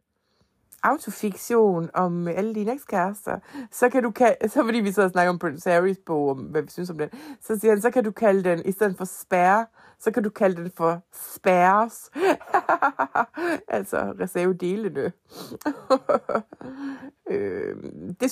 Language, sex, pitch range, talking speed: Danish, female, 160-225 Hz, 155 wpm